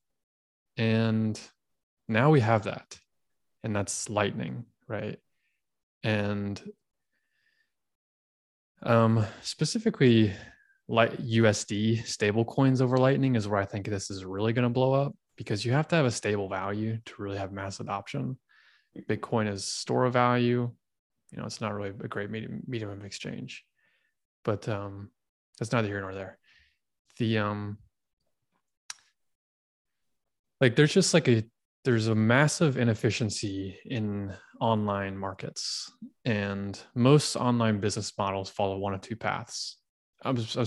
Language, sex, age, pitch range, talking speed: English, male, 20-39, 100-125 Hz, 130 wpm